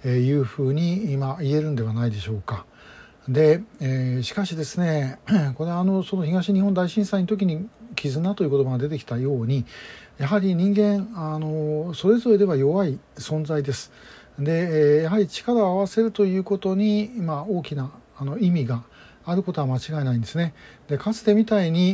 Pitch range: 140-185 Hz